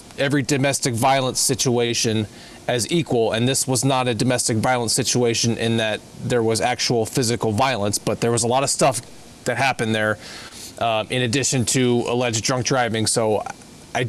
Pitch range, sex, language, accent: 120-150 Hz, male, English, American